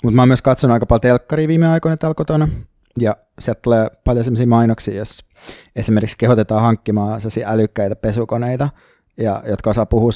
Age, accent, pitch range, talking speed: 20-39, native, 110-125 Hz, 160 wpm